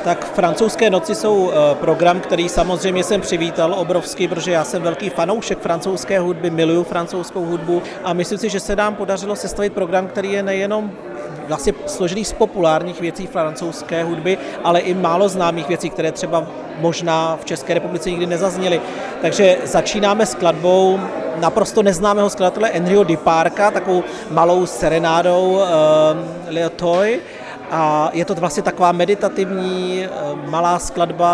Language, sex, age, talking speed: Czech, male, 40-59, 140 wpm